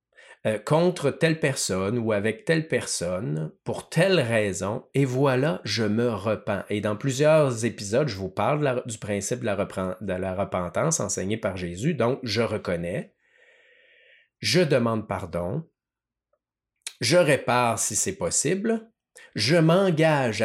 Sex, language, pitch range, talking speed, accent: male, French, 110-175 Hz, 140 wpm, Canadian